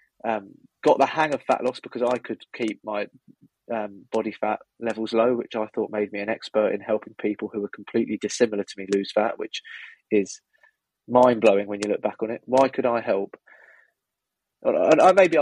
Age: 20-39